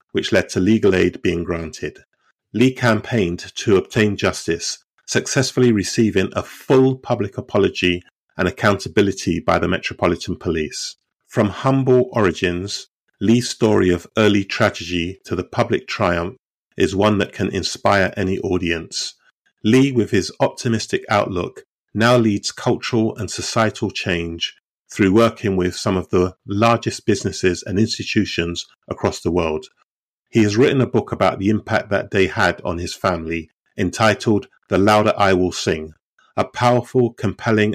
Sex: male